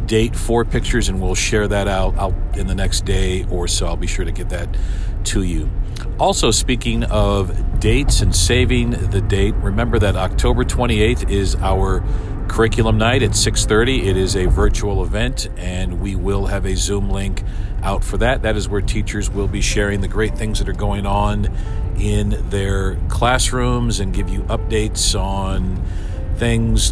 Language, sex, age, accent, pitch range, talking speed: English, male, 50-69, American, 90-105 Hz, 175 wpm